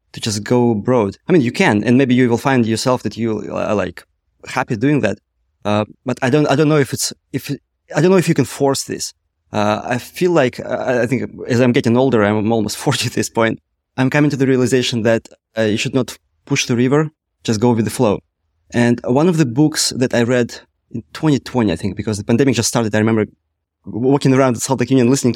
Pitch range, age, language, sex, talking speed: 110-135 Hz, 20-39, English, male, 235 wpm